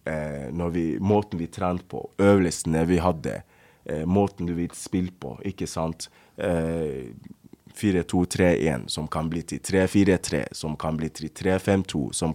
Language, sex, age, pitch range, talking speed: English, male, 20-39, 90-110 Hz, 165 wpm